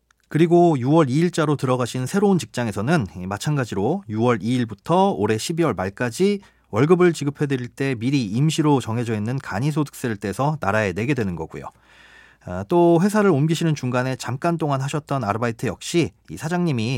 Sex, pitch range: male, 120-165 Hz